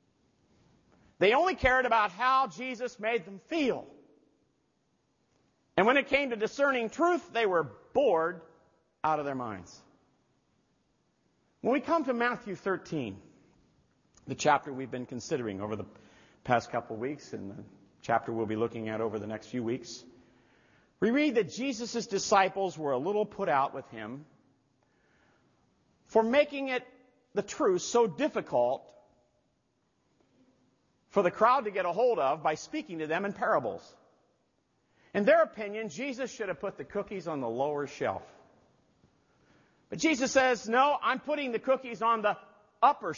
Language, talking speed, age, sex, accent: English, 150 wpm, 50-69, male, American